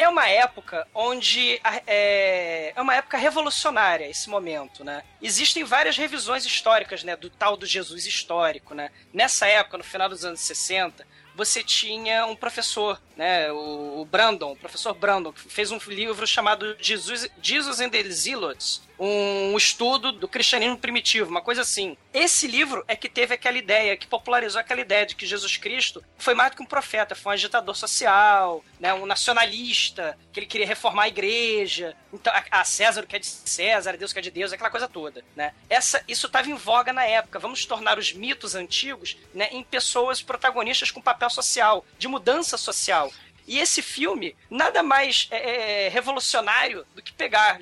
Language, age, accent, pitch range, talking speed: Portuguese, 20-39, Brazilian, 195-260 Hz, 175 wpm